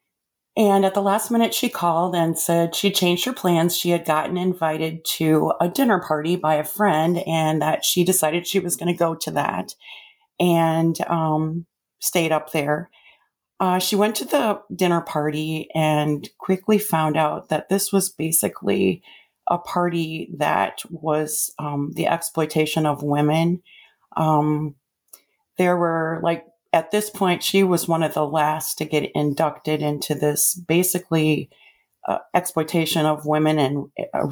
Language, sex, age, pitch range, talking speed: English, female, 40-59, 155-180 Hz, 155 wpm